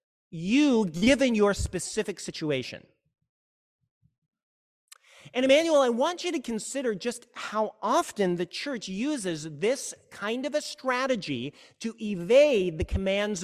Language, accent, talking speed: English, American, 120 wpm